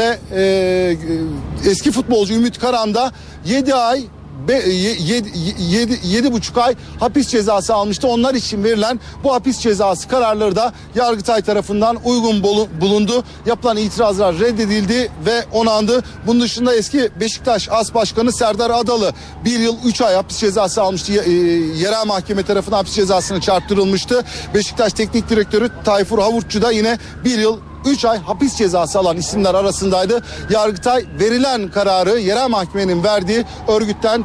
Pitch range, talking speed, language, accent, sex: 205-245 Hz, 140 wpm, Turkish, native, male